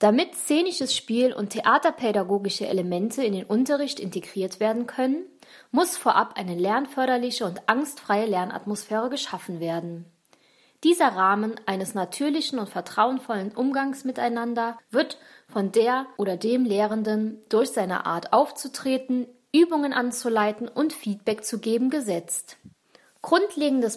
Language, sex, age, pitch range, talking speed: German, female, 20-39, 190-265 Hz, 120 wpm